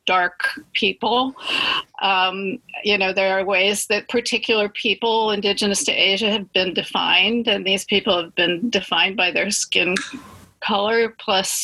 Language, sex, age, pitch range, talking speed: English, female, 40-59, 200-235 Hz, 145 wpm